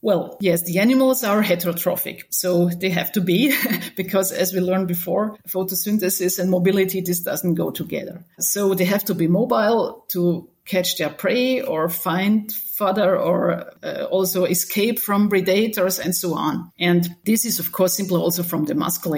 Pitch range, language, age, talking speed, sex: 170-200 Hz, English, 40-59, 170 wpm, female